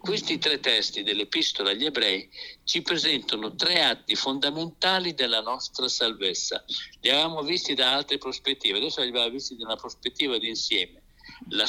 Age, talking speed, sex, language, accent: 60-79, 155 wpm, male, Italian, native